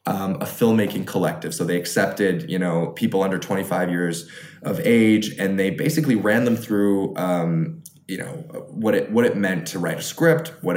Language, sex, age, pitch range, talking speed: English, male, 20-39, 90-135 Hz, 190 wpm